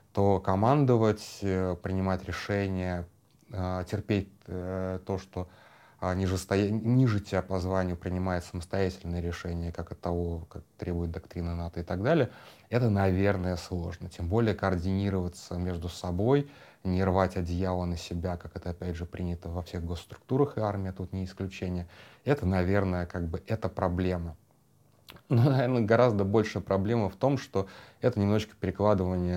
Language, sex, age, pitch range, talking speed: Russian, male, 20-39, 90-100 Hz, 140 wpm